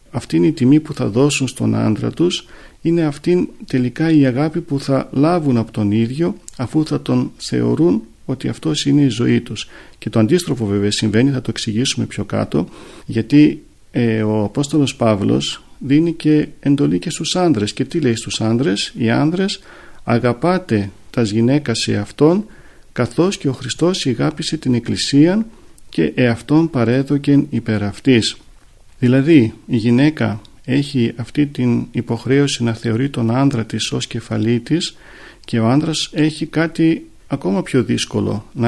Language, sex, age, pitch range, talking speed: Greek, male, 50-69, 115-155 Hz, 150 wpm